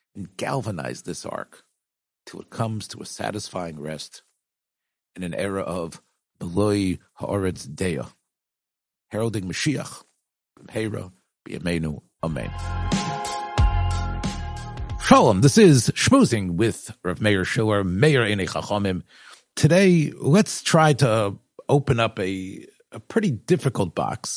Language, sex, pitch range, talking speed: English, male, 95-135 Hz, 110 wpm